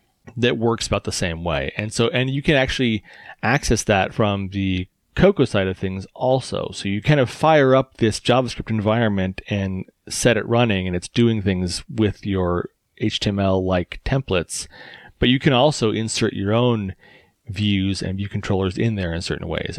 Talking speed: 180 wpm